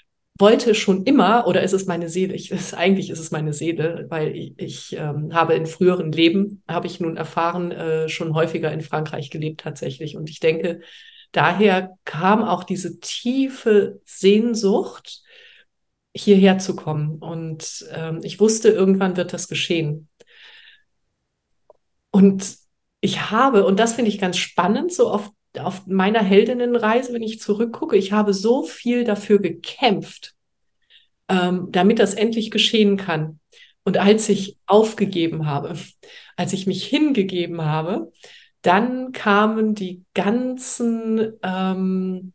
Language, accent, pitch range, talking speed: German, German, 175-215 Hz, 135 wpm